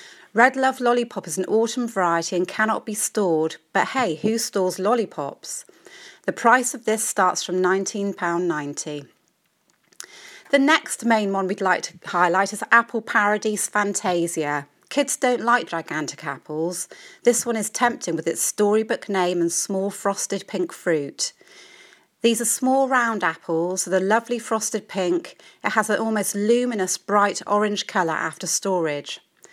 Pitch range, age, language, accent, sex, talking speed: 175-235 Hz, 30-49, English, British, female, 150 wpm